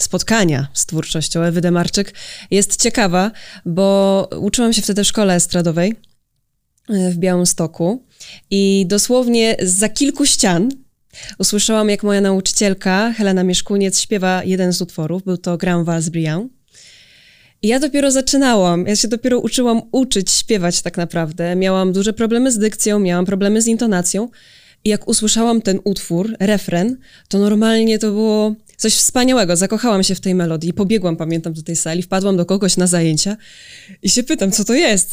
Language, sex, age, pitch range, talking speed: Polish, female, 20-39, 175-215 Hz, 150 wpm